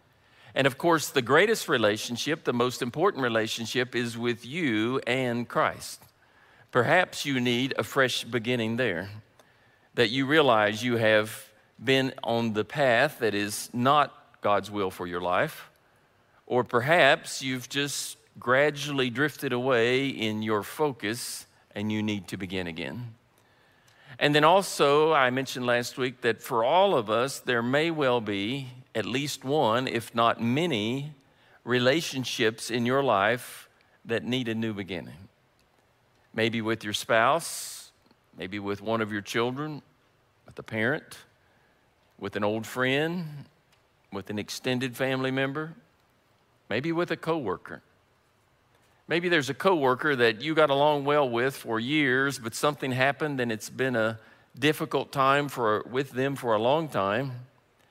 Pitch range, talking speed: 110-140 Hz, 145 wpm